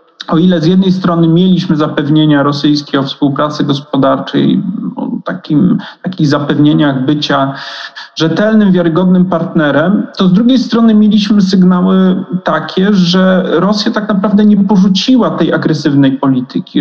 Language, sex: Polish, male